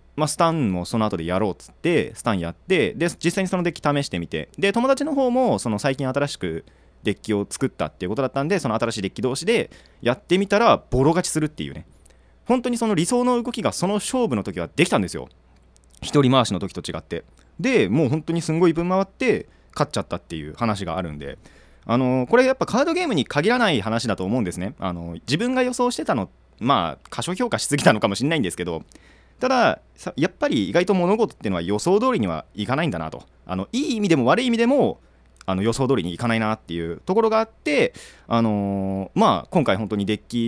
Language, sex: Japanese, male